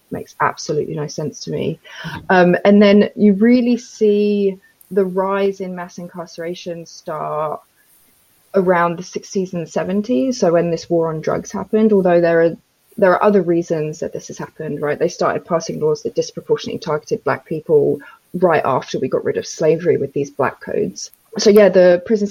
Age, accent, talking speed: 20-39, British, 180 wpm